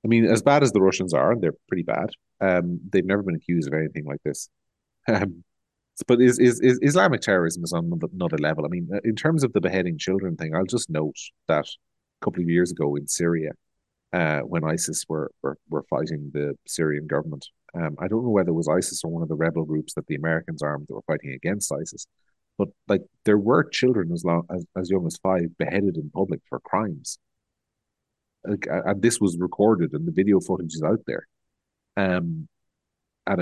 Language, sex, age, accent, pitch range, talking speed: English, male, 30-49, Irish, 85-100 Hz, 205 wpm